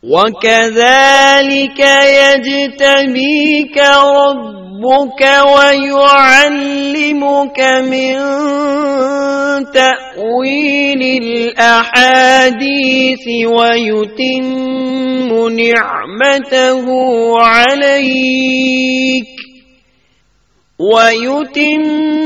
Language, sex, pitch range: Urdu, male, 240-280 Hz